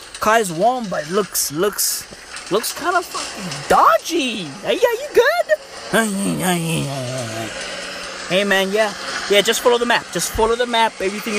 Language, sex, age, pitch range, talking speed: English, male, 20-39, 185-280 Hz, 140 wpm